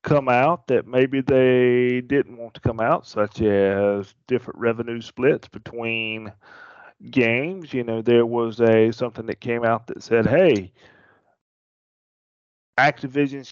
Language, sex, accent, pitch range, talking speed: English, male, American, 115-135 Hz, 135 wpm